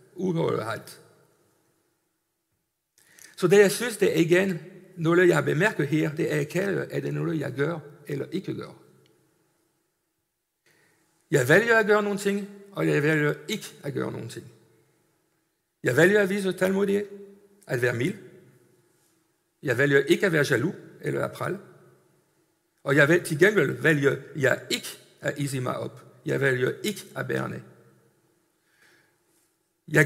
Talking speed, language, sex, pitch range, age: 145 wpm, Danish, male, 145-185 Hz, 50-69